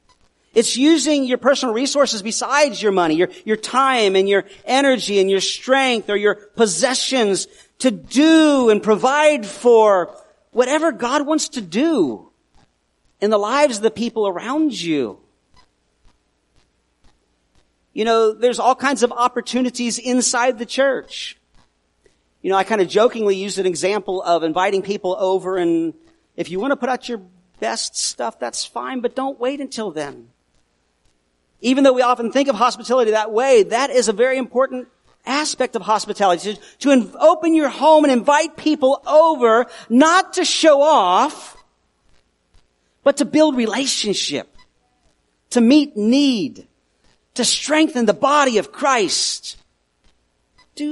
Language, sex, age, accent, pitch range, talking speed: English, male, 40-59, American, 180-270 Hz, 145 wpm